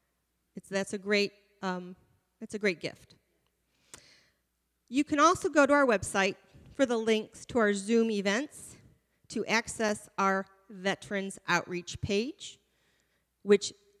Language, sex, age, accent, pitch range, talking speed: English, female, 40-59, American, 185-235 Hz, 130 wpm